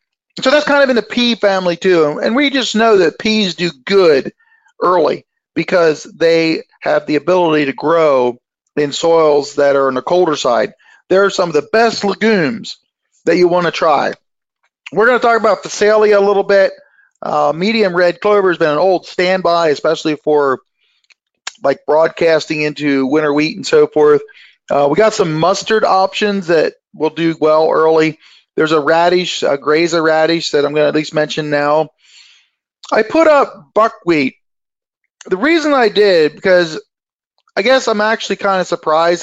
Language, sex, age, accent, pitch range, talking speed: English, male, 40-59, American, 155-220 Hz, 170 wpm